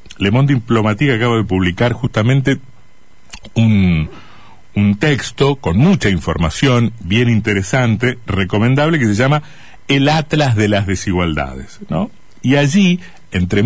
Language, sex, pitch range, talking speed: Spanish, male, 100-145 Hz, 125 wpm